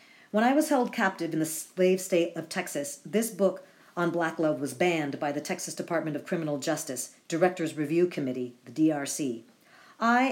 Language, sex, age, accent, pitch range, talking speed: English, female, 50-69, American, 150-195 Hz, 180 wpm